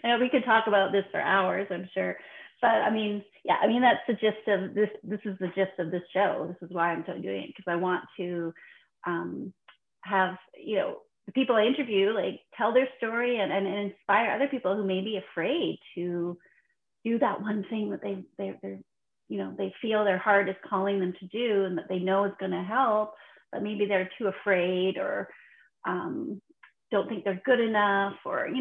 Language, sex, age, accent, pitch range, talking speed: English, female, 30-49, American, 180-220 Hz, 215 wpm